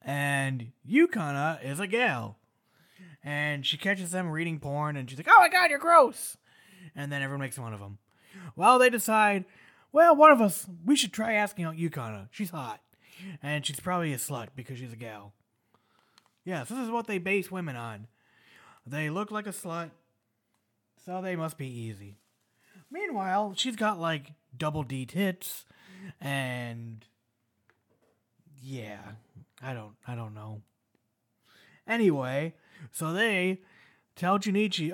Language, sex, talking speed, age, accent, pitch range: English, male, 150 wpm, 20-39, American, 130-205 Hz